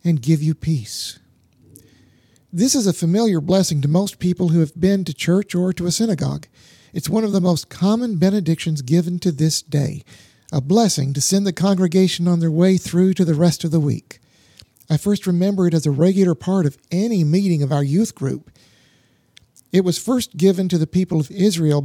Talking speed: 200 wpm